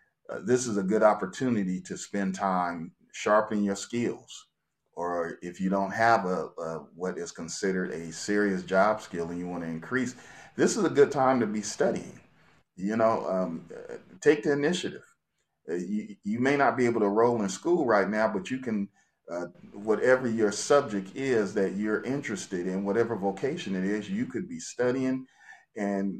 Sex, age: male, 40-59